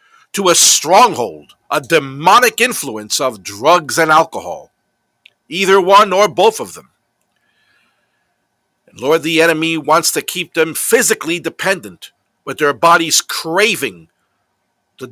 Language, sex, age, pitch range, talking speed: English, male, 50-69, 160-220 Hz, 125 wpm